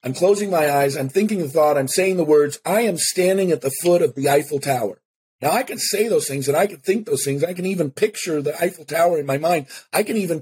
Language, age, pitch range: English, 50-69, 135-185 Hz